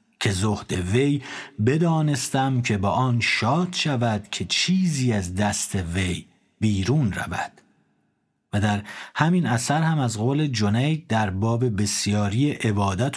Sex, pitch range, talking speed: male, 100-140 Hz, 125 wpm